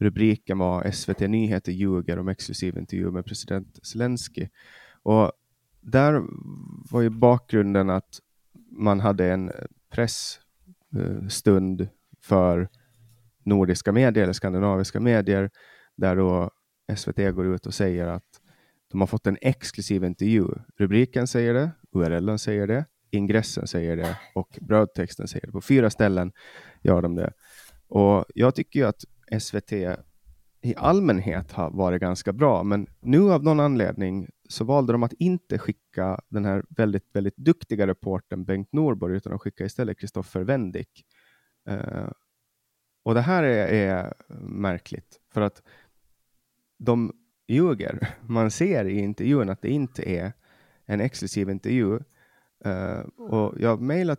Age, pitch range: 30-49, 95-120 Hz